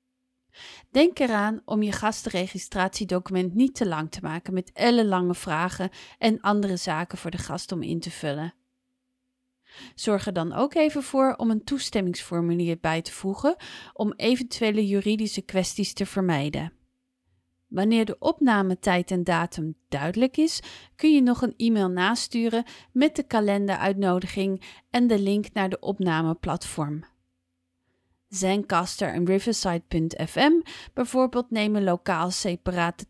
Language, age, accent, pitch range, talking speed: English, 30-49, Dutch, 180-245 Hz, 125 wpm